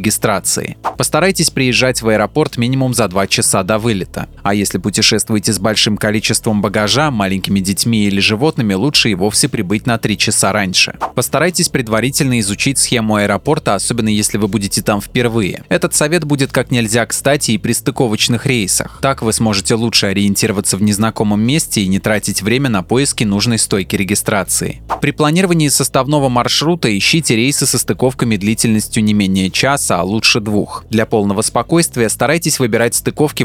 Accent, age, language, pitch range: native, 20-39, Russian, 105-130 Hz